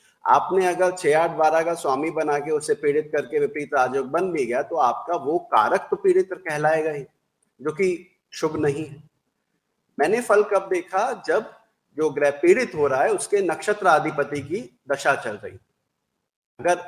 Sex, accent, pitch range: male, native, 145-205 Hz